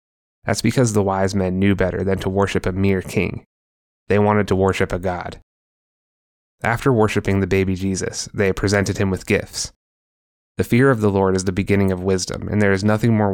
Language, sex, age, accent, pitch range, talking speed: English, male, 20-39, American, 90-105 Hz, 200 wpm